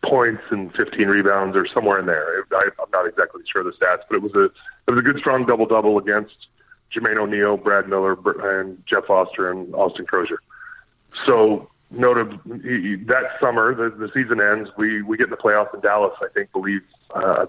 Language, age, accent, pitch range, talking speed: English, 30-49, American, 100-135 Hz, 205 wpm